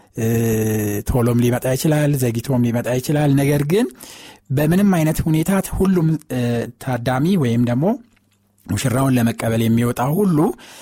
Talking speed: 105 wpm